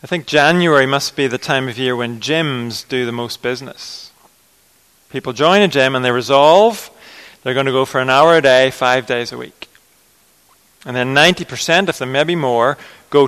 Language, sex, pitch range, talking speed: English, male, 130-155 Hz, 195 wpm